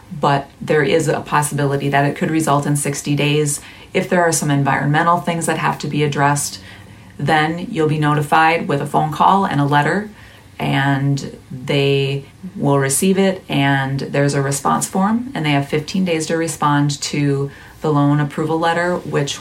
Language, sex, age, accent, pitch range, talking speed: English, female, 30-49, American, 140-160 Hz, 175 wpm